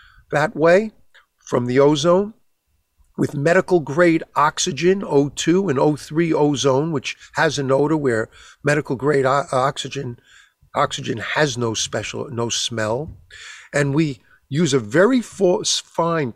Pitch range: 115-160 Hz